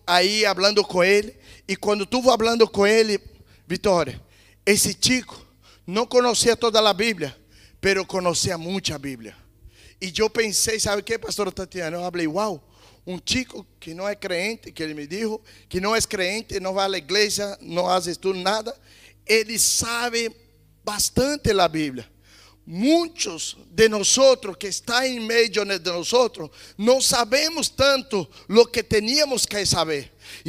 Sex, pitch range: male, 190-235 Hz